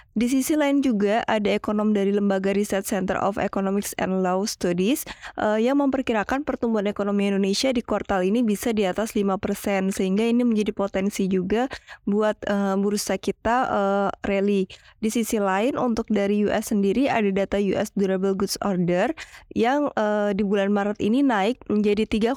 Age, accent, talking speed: 20-39, native, 160 wpm